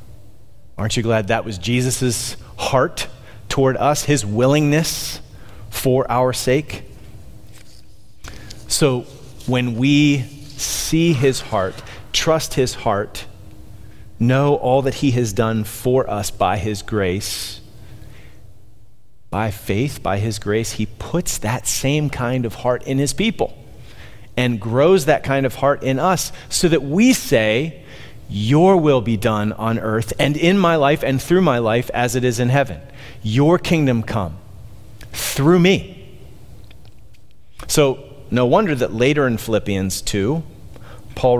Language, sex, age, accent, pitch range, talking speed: English, male, 30-49, American, 105-135 Hz, 135 wpm